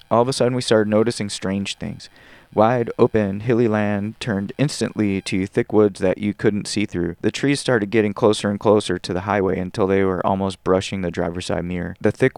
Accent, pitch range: American, 95-115 Hz